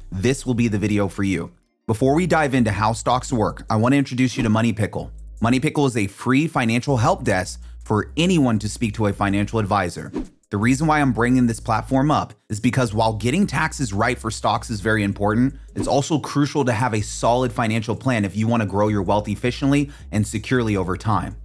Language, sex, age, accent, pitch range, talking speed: English, male, 30-49, American, 105-130 Hz, 220 wpm